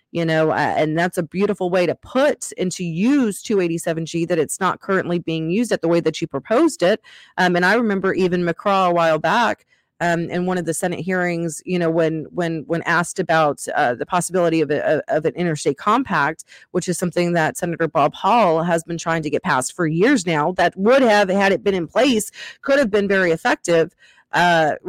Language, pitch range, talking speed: English, 160-190 Hz, 215 wpm